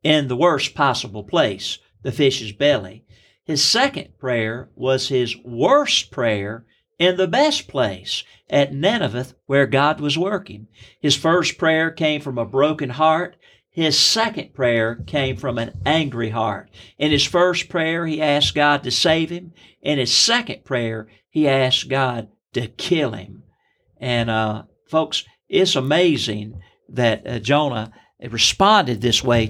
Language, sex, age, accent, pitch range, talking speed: English, male, 50-69, American, 120-175 Hz, 150 wpm